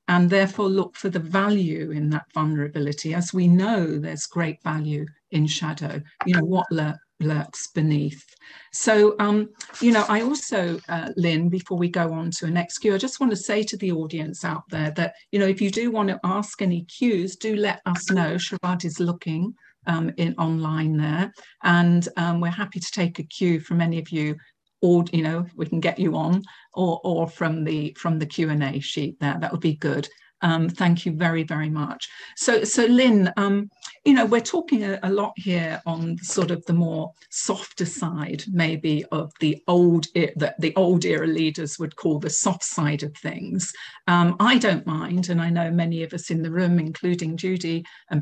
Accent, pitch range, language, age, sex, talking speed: British, 155-185 Hz, English, 50-69, female, 200 wpm